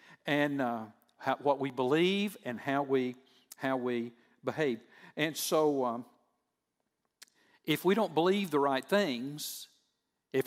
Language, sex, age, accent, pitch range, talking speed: English, male, 50-69, American, 130-175 Hz, 130 wpm